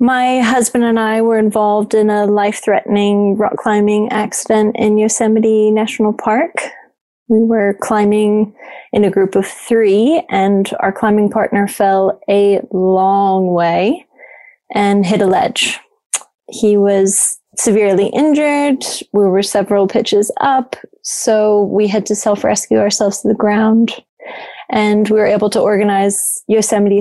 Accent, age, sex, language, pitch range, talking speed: American, 20-39, female, English, 195-225 Hz, 135 wpm